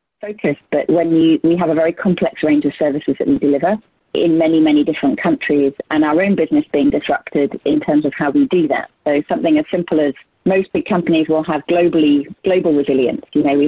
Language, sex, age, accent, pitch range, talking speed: English, female, 30-49, British, 150-225 Hz, 215 wpm